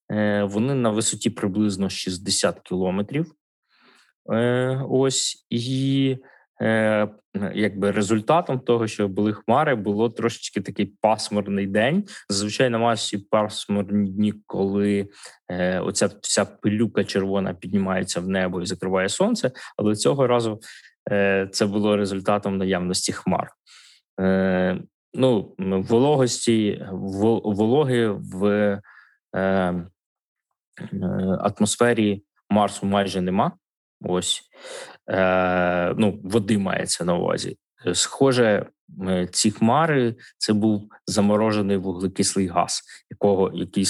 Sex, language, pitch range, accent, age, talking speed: male, Ukrainian, 95-110 Hz, native, 20-39, 90 wpm